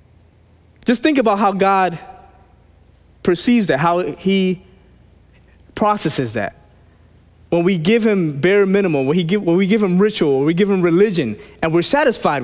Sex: male